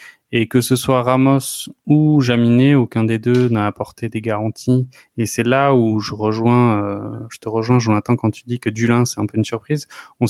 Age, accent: 20-39, French